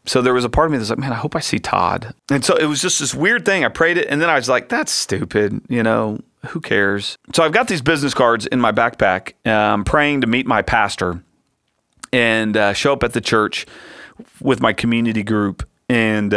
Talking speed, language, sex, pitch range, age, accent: 230 wpm, English, male, 105-145 Hz, 40-59, American